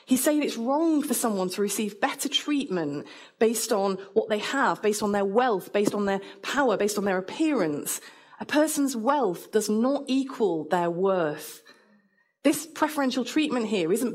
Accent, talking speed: British, 170 wpm